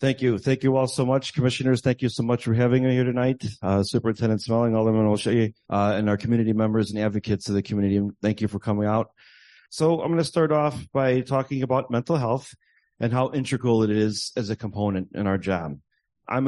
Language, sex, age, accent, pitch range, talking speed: English, male, 30-49, American, 100-125 Hz, 220 wpm